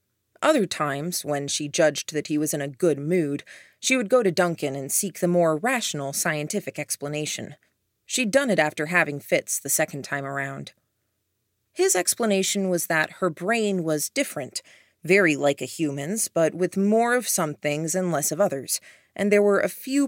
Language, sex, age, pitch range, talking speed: English, female, 30-49, 140-195 Hz, 180 wpm